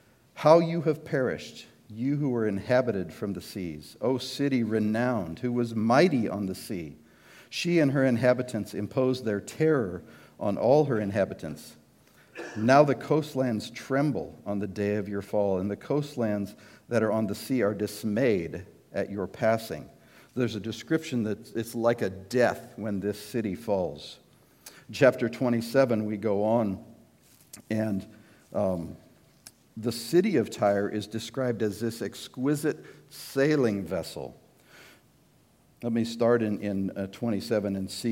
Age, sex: 50-69, male